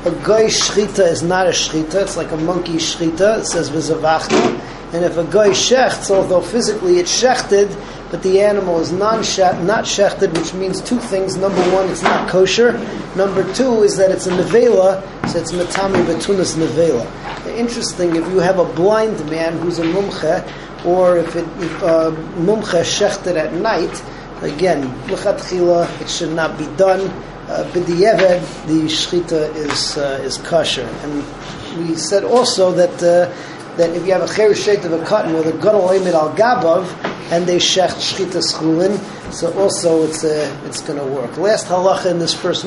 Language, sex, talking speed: English, male, 170 wpm